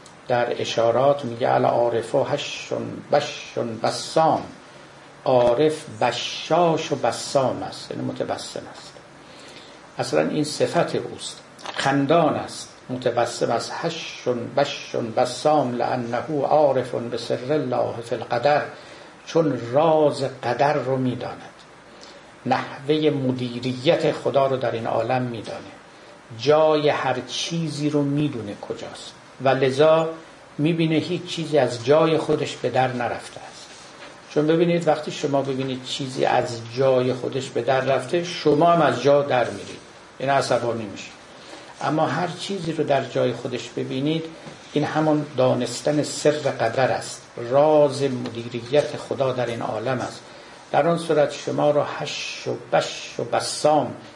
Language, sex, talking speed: Persian, male, 130 wpm